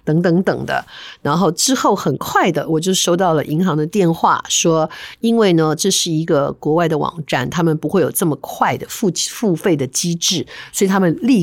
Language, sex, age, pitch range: Chinese, female, 50-69, 155-200 Hz